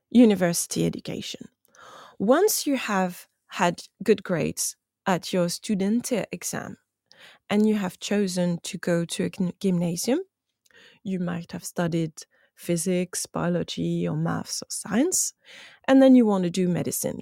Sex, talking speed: female, 130 wpm